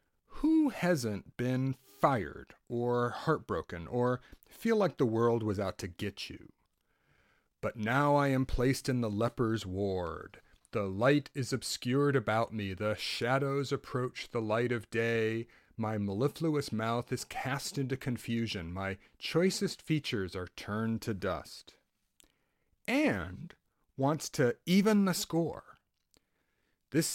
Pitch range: 110-155 Hz